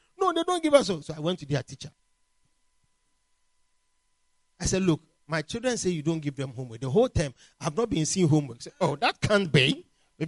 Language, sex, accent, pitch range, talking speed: English, male, Nigerian, 160-225 Hz, 210 wpm